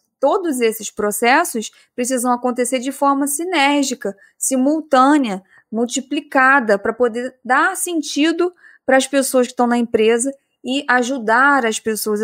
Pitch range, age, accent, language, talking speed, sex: 230-285 Hz, 20-39, Brazilian, Portuguese, 125 wpm, female